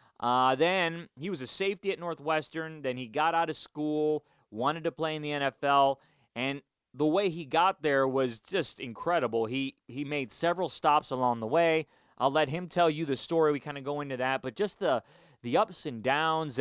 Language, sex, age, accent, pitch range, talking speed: English, male, 30-49, American, 125-160 Hz, 205 wpm